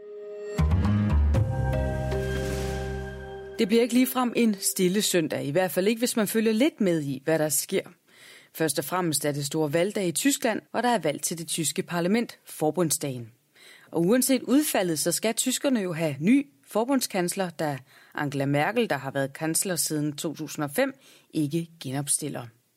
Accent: native